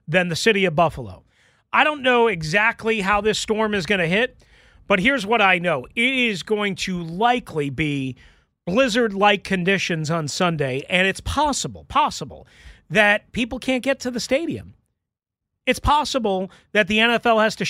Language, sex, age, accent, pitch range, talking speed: English, male, 40-59, American, 180-245 Hz, 165 wpm